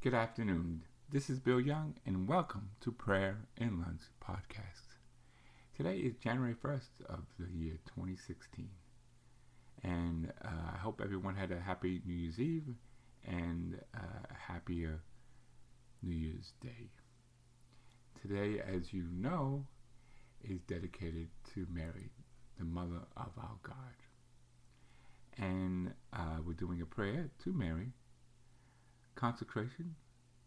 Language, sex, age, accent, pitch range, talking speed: English, male, 50-69, American, 90-120 Hz, 120 wpm